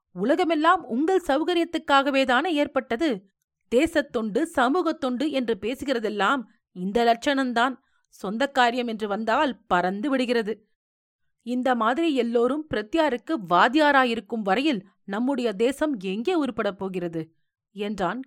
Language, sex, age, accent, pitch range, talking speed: Tamil, female, 30-49, native, 200-280 Hz, 95 wpm